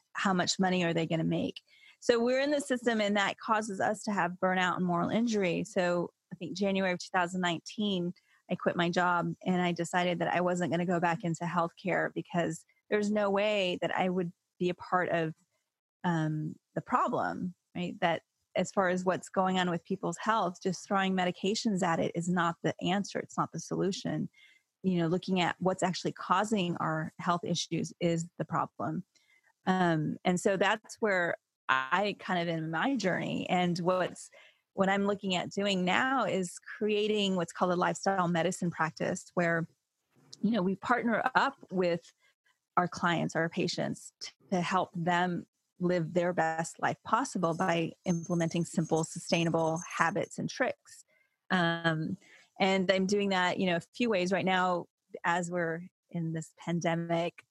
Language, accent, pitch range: English, American, 170-195 Hz